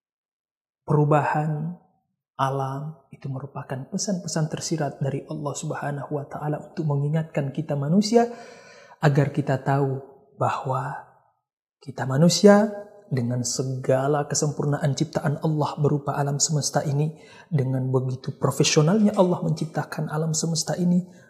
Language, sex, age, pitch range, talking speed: Indonesian, male, 30-49, 140-180 Hz, 105 wpm